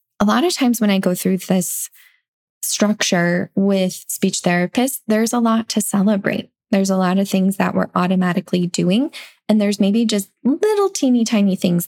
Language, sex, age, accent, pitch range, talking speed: English, female, 10-29, American, 185-220 Hz, 175 wpm